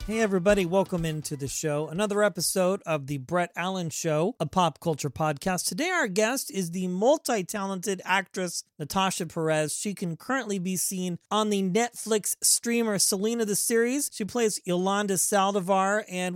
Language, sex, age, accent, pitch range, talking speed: English, male, 40-59, American, 180-220 Hz, 160 wpm